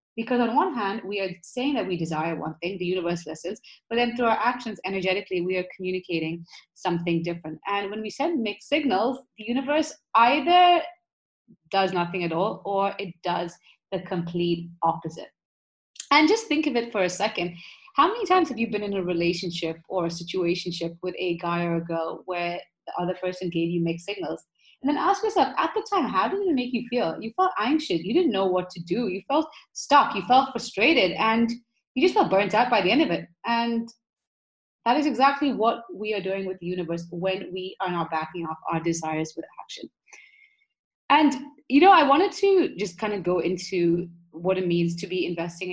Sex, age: female, 30-49